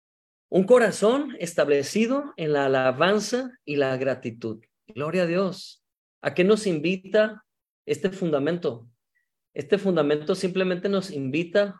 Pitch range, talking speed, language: 135-200 Hz, 115 wpm, Spanish